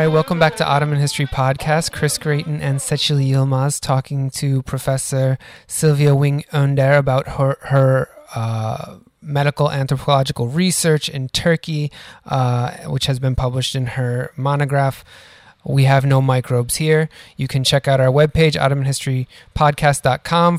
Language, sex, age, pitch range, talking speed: English, male, 20-39, 130-155 Hz, 135 wpm